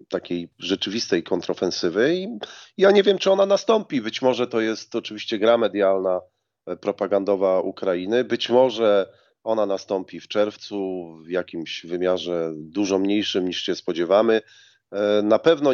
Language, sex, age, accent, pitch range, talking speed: Polish, male, 40-59, native, 95-115 Hz, 135 wpm